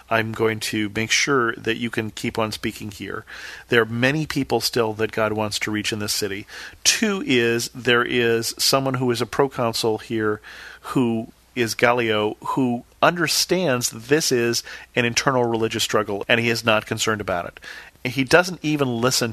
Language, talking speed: English, 175 wpm